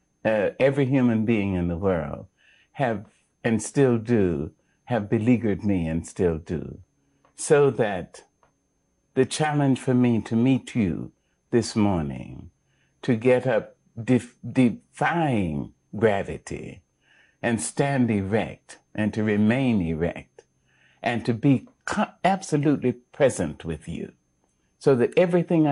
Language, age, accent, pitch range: English, 60-79, American, 90-135 Hz